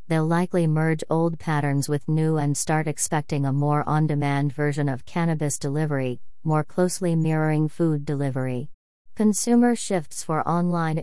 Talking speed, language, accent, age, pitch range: 140 wpm, English, American, 40-59, 140-170 Hz